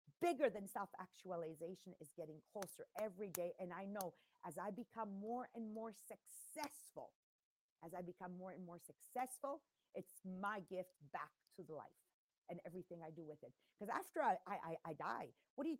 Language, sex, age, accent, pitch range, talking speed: English, female, 40-59, American, 185-250 Hz, 180 wpm